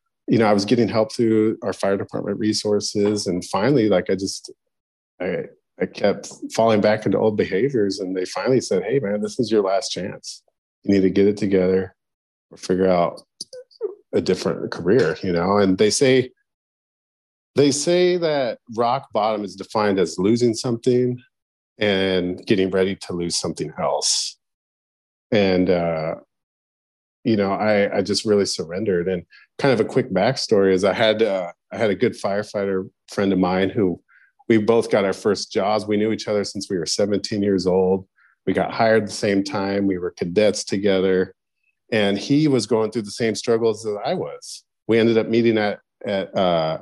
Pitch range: 95-115 Hz